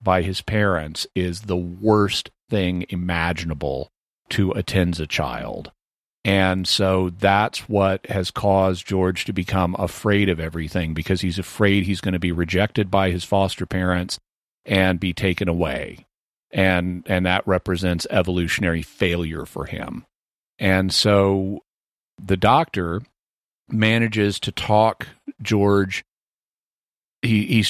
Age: 40-59